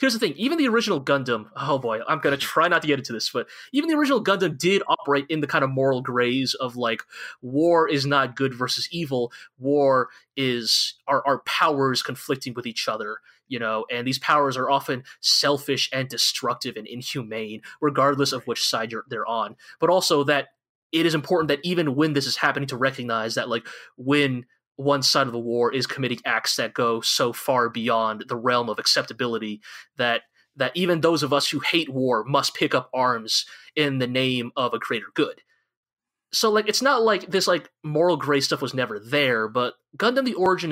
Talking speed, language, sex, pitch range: 205 wpm, English, male, 125-165 Hz